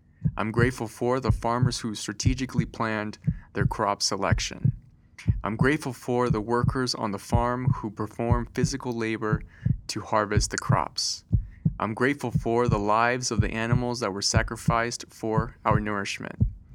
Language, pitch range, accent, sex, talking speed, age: English, 105-125 Hz, American, male, 145 wpm, 30-49